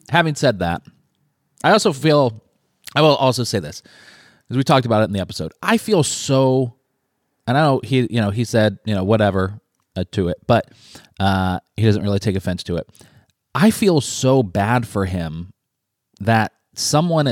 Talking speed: 185 wpm